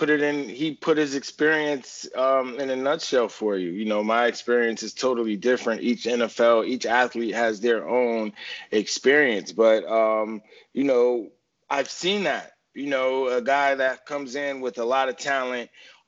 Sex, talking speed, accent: male, 175 wpm, American